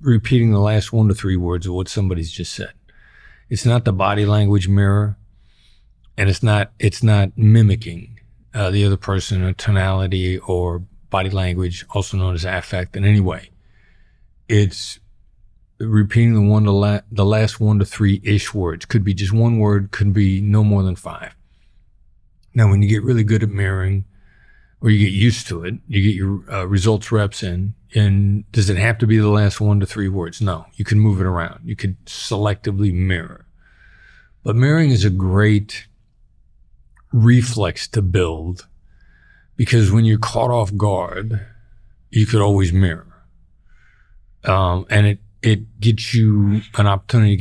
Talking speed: 170 wpm